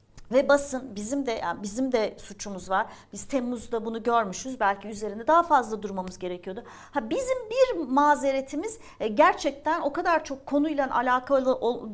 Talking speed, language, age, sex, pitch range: 145 wpm, Turkish, 40-59, female, 225-295 Hz